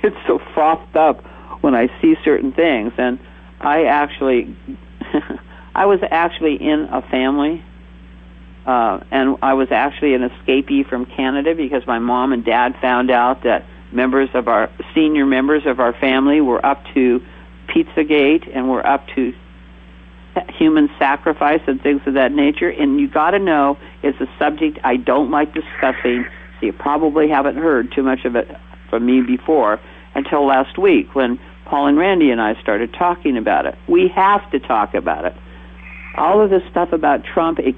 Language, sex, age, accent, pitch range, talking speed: English, male, 50-69, American, 120-155 Hz, 175 wpm